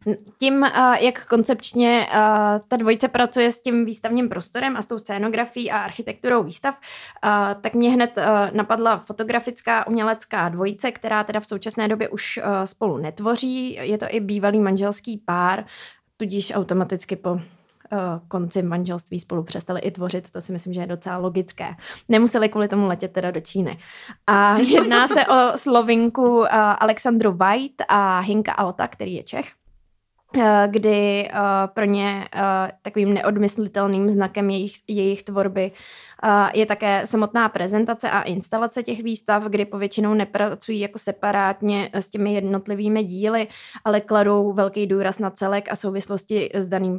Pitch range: 195-225 Hz